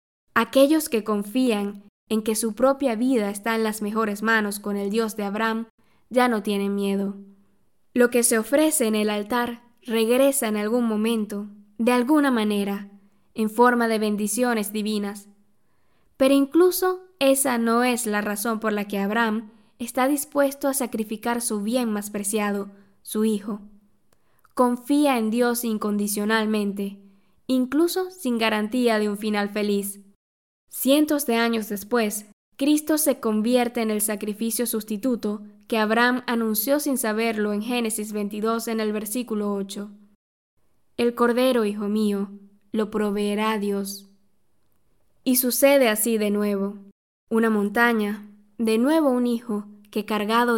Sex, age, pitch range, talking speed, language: female, 10-29, 205-240 Hz, 140 wpm, Spanish